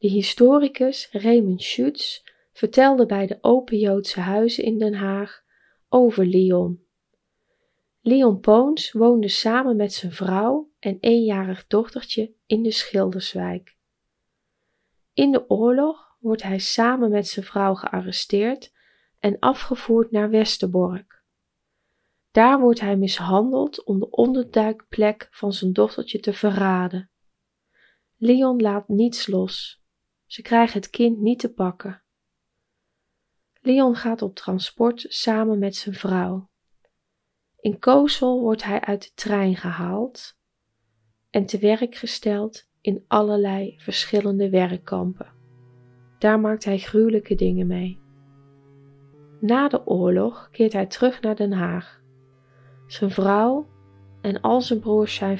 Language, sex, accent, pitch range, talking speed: Dutch, female, Dutch, 185-235 Hz, 120 wpm